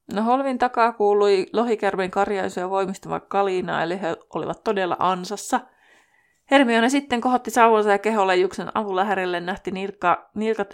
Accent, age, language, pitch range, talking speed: native, 20-39, Finnish, 175-210 Hz, 135 wpm